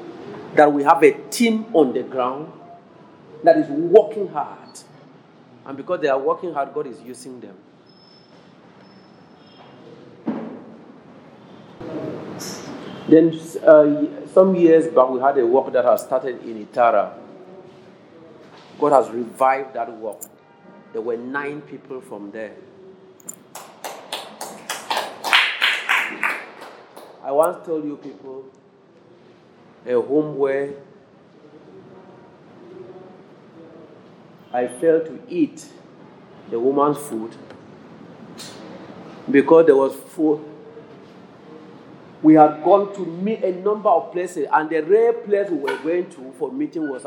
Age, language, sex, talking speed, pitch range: 50-69, English, male, 110 wpm, 145-205 Hz